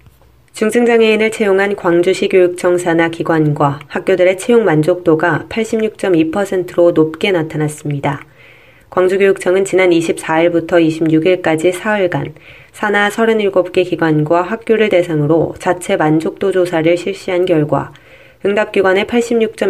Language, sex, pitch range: Korean, female, 160-195 Hz